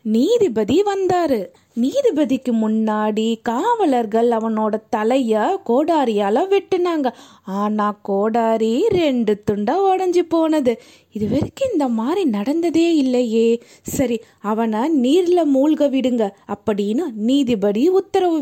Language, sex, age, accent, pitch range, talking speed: Tamil, female, 20-39, native, 225-330 Hz, 90 wpm